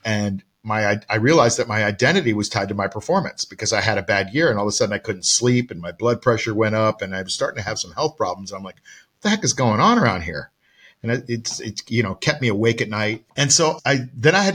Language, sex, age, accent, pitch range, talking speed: English, male, 50-69, American, 105-145 Hz, 285 wpm